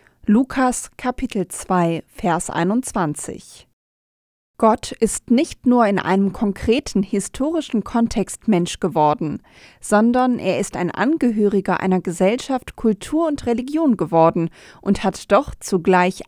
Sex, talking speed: female, 115 wpm